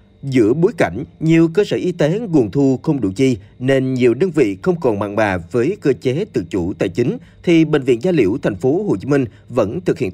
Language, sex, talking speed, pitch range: Vietnamese, male, 245 wpm, 110-155 Hz